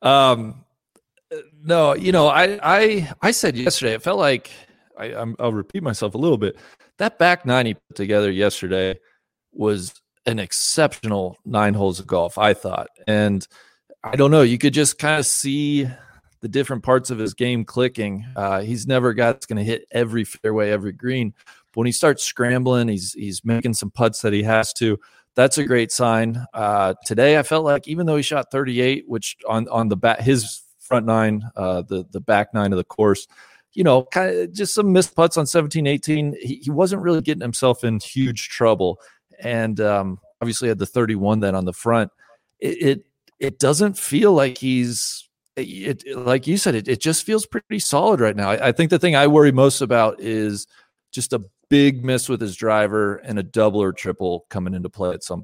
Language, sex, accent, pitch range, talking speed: English, male, American, 105-145 Hz, 200 wpm